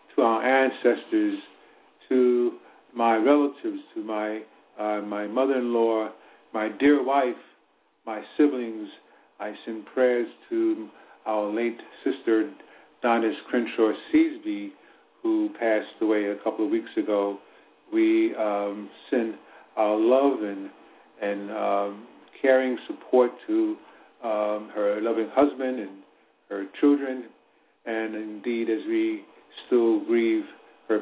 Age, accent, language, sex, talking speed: 50-69, American, English, male, 115 wpm